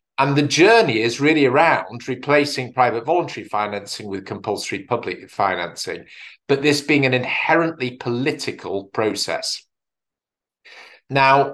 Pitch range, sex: 120-150 Hz, male